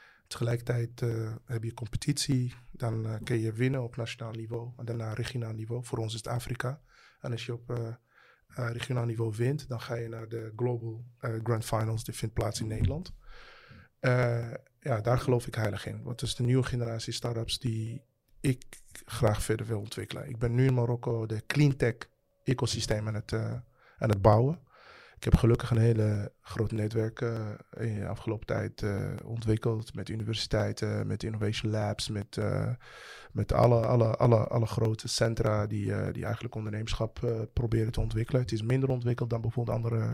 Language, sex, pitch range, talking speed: Dutch, male, 110-120 Hz, 180 wpm